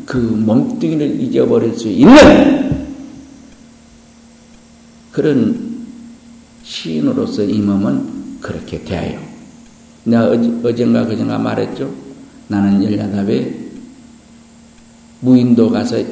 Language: Korean